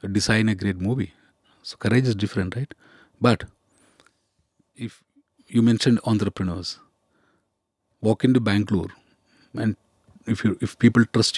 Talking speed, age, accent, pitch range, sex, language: 125 wpm, 40-59, native, 100-120 Hz, male, Hindi